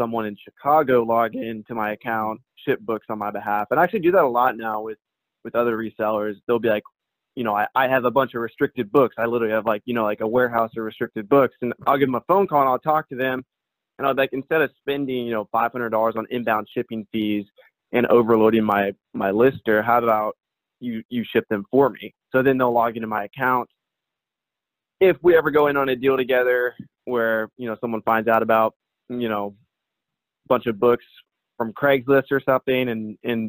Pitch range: 110-130 Hz